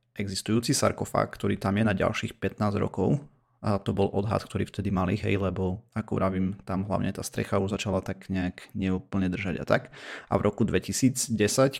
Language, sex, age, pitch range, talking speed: Slovak, male, 30-49, 95-110 Hz, 185 wpm